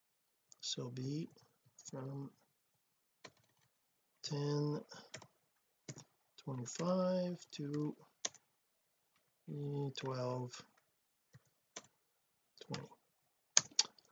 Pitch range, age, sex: 135-180 Hz, 50-69, male